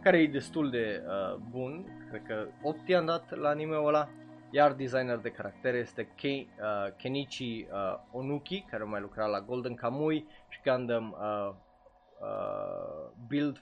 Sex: male